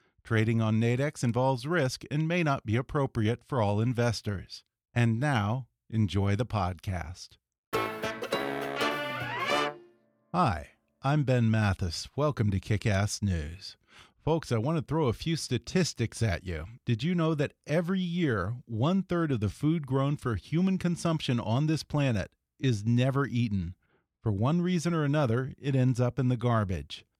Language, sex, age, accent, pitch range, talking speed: English, male, 40-59, American, 110-145 Hz, 150 wpm